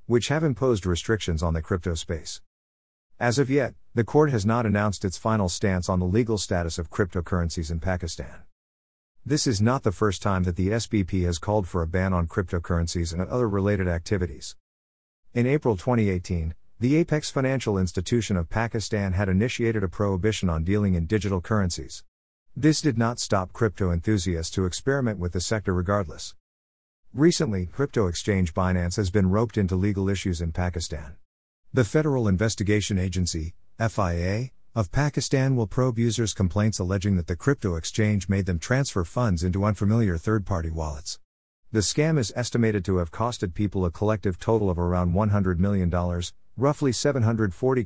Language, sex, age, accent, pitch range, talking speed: English, male, 50-69, American, 90-115 Hz, 165 wpm